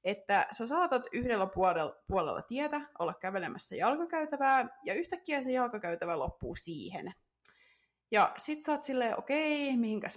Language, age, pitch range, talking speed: Finnish, 30-49, 215-280 Hz, 135 wpm